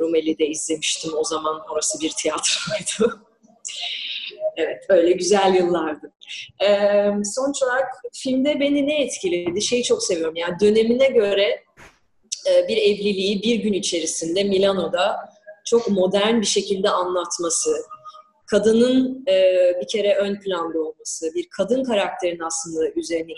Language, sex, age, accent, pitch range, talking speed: Turkish, female, 30-49, native, 175-225 Hz, 120 wpm